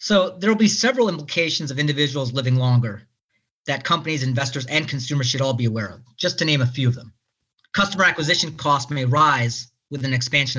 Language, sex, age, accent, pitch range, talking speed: English, male, 40-59, American, 120-155 Hz, 200 wpm